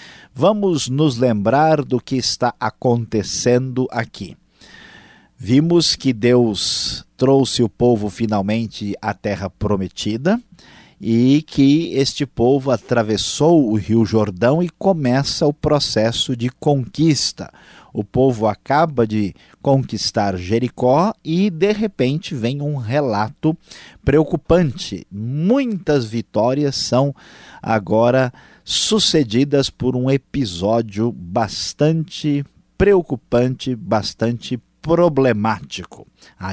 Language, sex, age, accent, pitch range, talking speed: Portuguese, male, 50-69, Brazilian, 115-150 Hz, 95 wpm